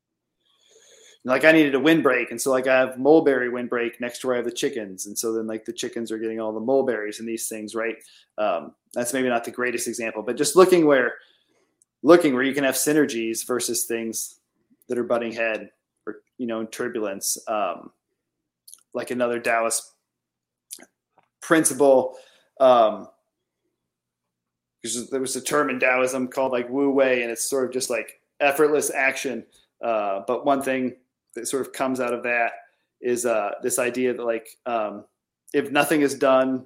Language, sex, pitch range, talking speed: English, male, 120-145 Hz, 175 wpm